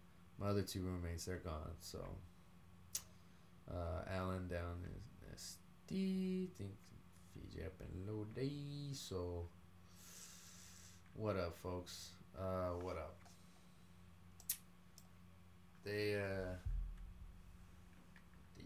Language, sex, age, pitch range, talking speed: English, male, 30-49, 90-95 Hz, 85 wpm